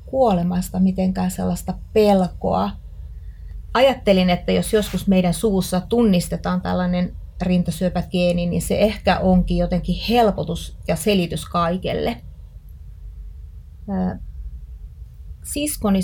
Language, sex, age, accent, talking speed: Finnish, female, 30-49, native, 85 wpm